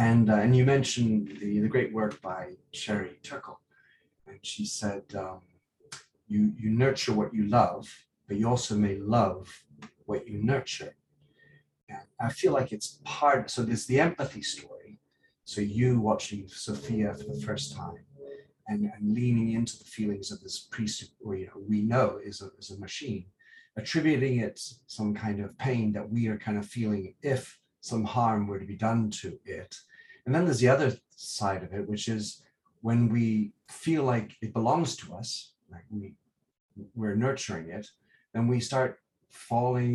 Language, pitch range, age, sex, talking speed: English, 105-125 Hz, 40-59, male, 170 wpm